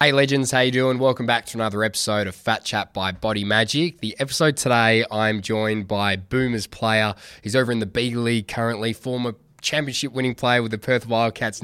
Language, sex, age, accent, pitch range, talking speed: English, male, 20-39, Australian, 105-130 Hz, 200 wpm